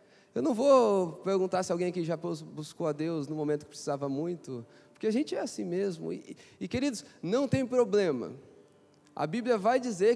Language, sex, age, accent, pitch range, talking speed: Portuguese, male, 20-39, Brazilian, 195-240 Hz, 190 wpm